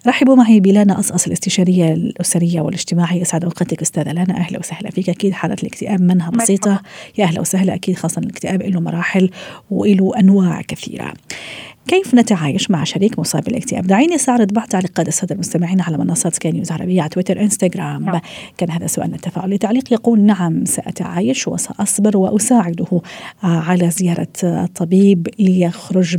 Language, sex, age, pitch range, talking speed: Arabic, female, 40-59, 175-220 Hz, 145 wpm